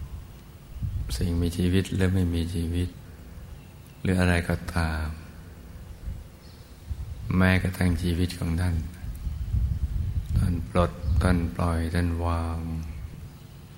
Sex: male